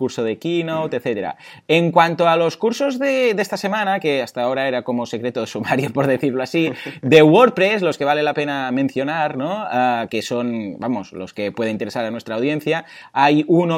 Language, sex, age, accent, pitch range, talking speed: Spanish, male, 30-49, Spanish, 115-170 Hz, 200 wpm